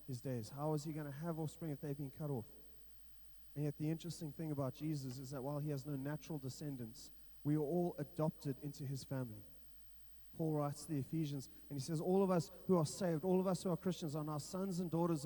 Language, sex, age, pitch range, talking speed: English, male, 30-49, 135-160 Hz, 240 wpm